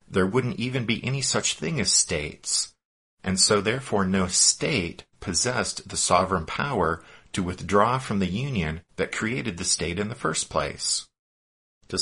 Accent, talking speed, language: American, 160 wpm, English